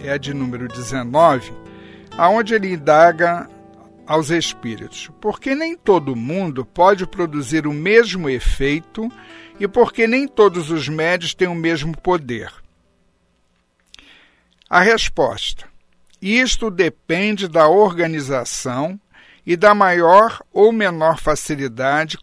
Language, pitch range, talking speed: Portuguese, 145-205 Hz, 110 wpm